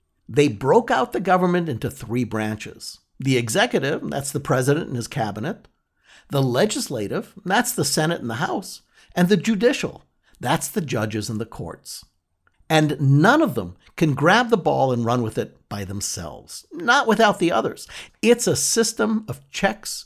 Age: 60-79